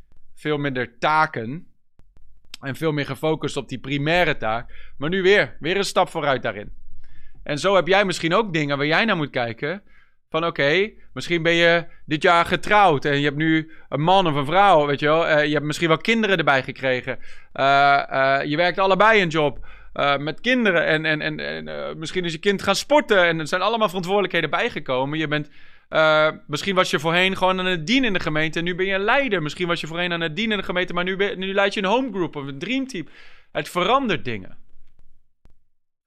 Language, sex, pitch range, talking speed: Dutch, male, 140-185 Hz, 220 wpm